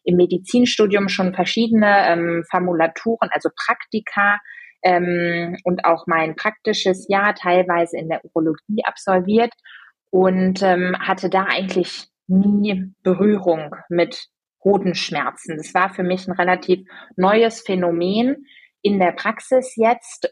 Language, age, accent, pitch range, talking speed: German, 20-39, German, 180-210 Hz, 120 wpm